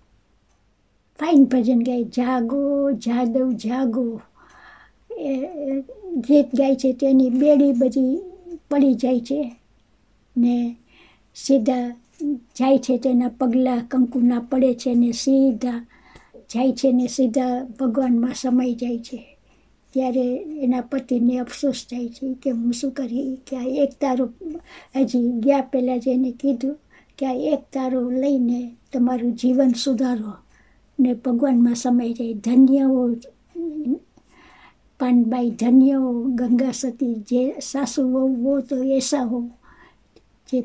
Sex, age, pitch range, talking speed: male, 60-79, 245-270 Hz, 115 wpm